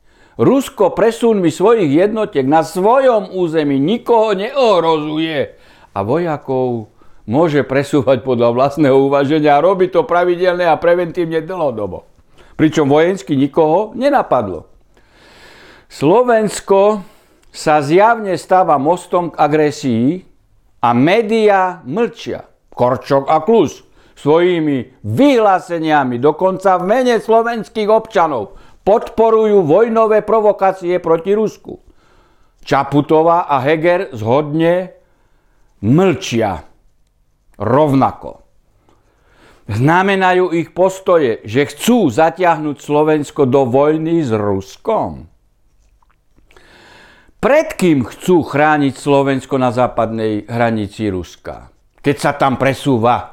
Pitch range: 135-190 Hz